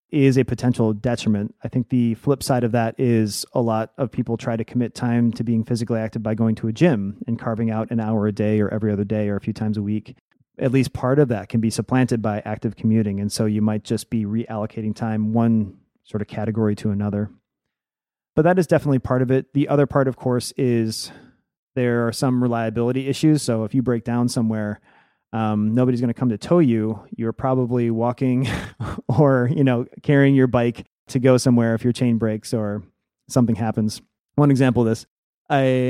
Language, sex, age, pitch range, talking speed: English, male, 30-49, 110-130 Hz, 210 wpm